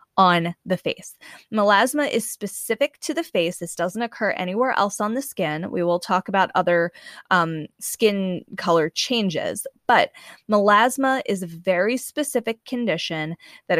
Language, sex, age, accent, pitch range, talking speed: English, female, 20-39, American, 175-220 Hz, 150 wpm